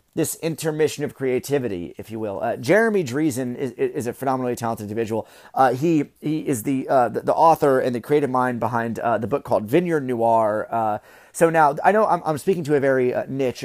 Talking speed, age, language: 215 wpm, 30-49, English